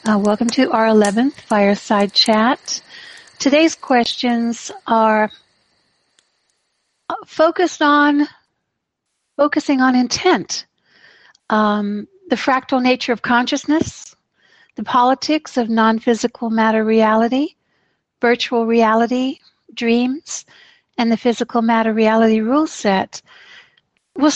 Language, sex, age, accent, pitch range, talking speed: English, female, 60-79, American, 220-280 Hz, 95 wpm